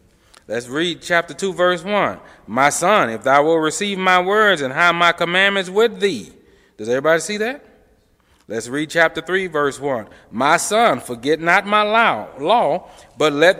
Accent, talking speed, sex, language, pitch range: American, 170 wpm, male, English, 140-205 Hz